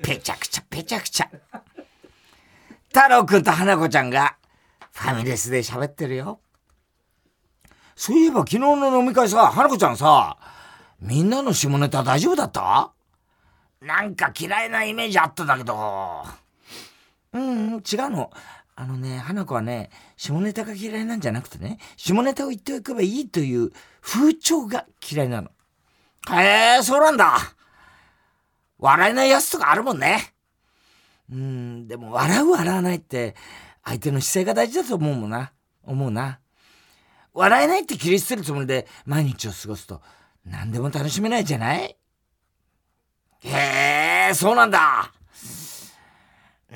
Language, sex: Japanese, male